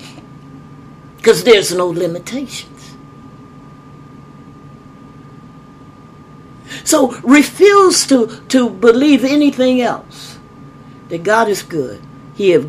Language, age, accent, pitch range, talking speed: English, 50-69, American, 135-230 Hz, 80 wpm